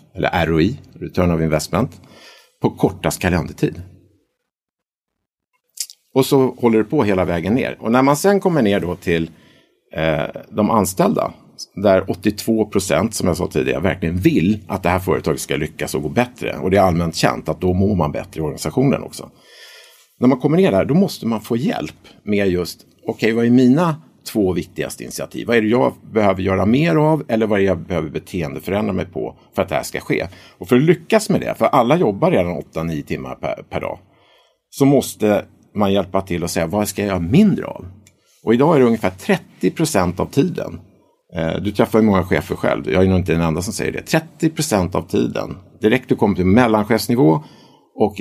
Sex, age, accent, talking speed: male, 50-69, Norwegian, 200 wpm